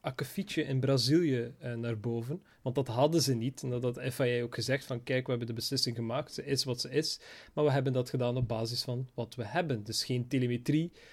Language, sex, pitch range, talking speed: Dutch, male, 130-155 Hz, 230 wpm